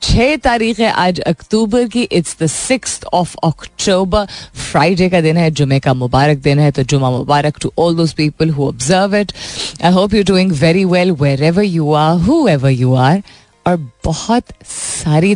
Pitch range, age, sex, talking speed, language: 145-185 Hz, 30-49, female, 110 wpm, Hindi